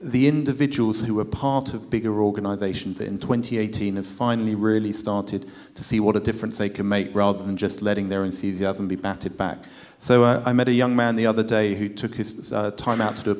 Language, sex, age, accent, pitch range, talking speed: English, male, 40-59, British, 95-115 Hz, 230 wpm